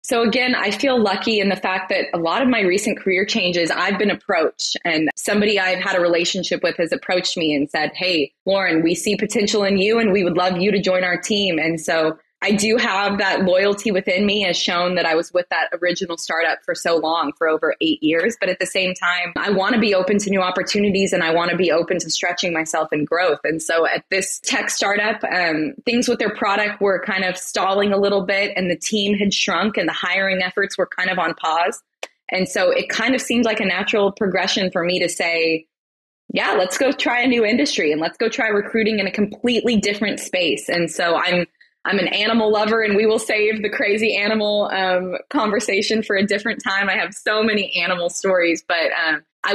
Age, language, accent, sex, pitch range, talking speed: 20-39, English, American, female, 180-215 Hz, 230 wpm